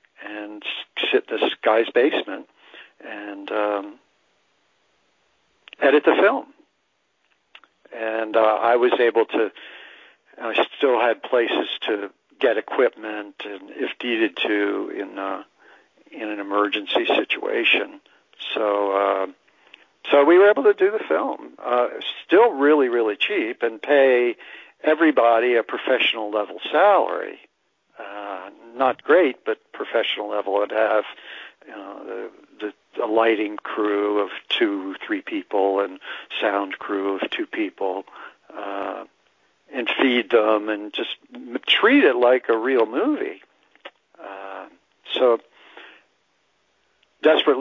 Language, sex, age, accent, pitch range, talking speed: English, male, 60-79, American, 105-145 Hz, 120 wpm